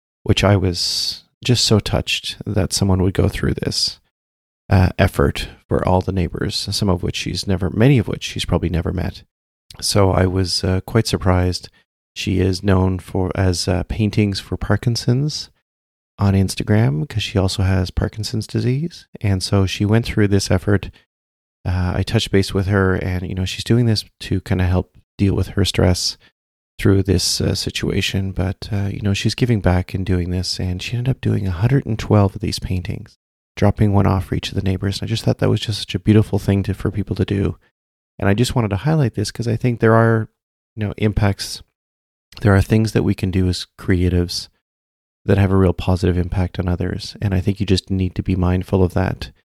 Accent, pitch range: American, 90-105 Hz